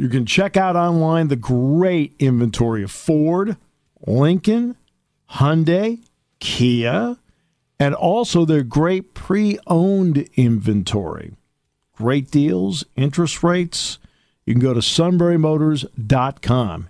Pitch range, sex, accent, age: 110-155 Hz, male, American, 50-69